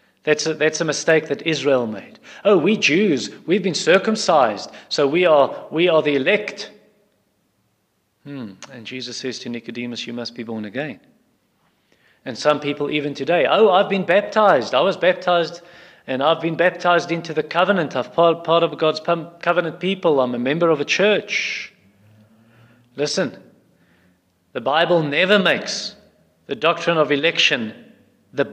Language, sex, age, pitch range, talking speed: English, male, 40-59, 145-195 Hz, 160 wpm